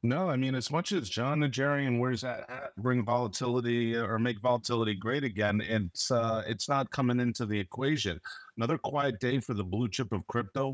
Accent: American